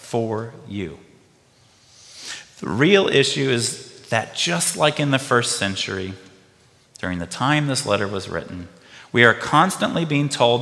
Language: English